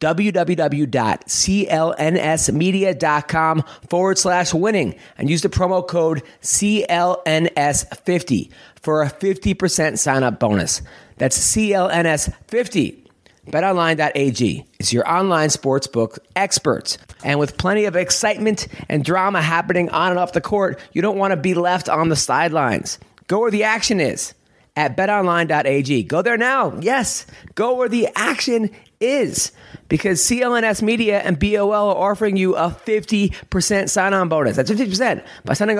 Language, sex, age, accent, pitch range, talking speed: English, male, 30-49, American, 155-200 Hz, 130 wpm